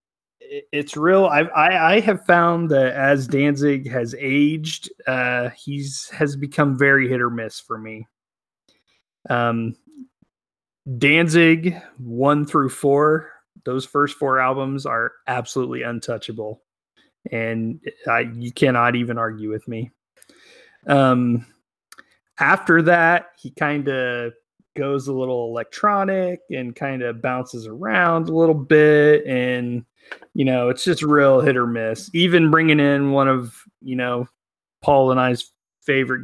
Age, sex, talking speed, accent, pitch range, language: 30-49, male, 130 wpm, American, 120-155 Hz, English